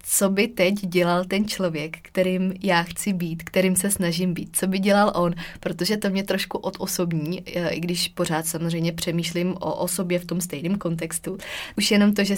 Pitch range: 170-190 Hz